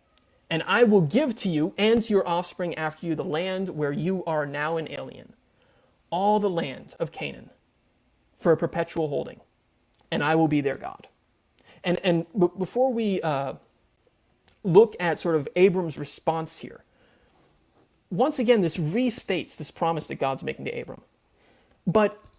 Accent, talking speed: American, 160 wpm